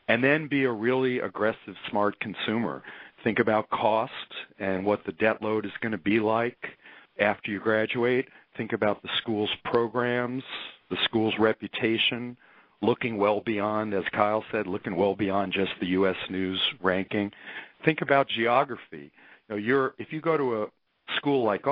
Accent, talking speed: American, 155 wpm